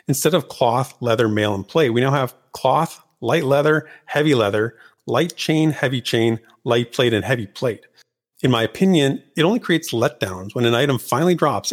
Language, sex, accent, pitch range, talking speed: English, male, American, 110-150 Hz, 185 wpm